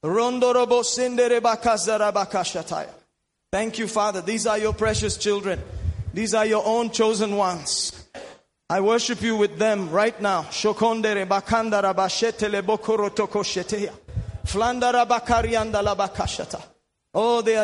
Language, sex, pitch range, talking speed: English, male, 220-280 Hz, 80 wpm